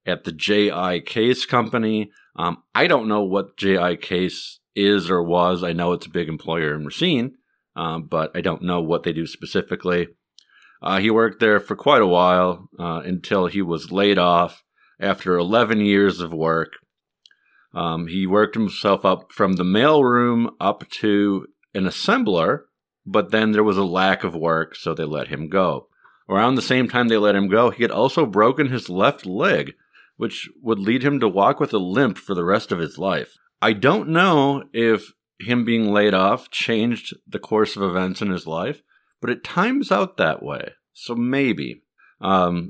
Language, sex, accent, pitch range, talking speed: English, male, American, 85-110 Hz, 185 wpm